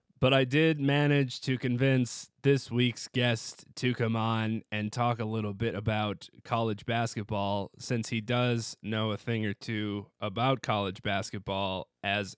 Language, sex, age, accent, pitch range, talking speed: English, male, 20-39, American, 105-135 Hz, 155 wpm